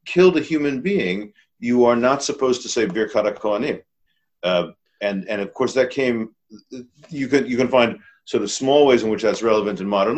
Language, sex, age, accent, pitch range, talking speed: English, male, 50-69, American, 105-135 Hz, 200 wpm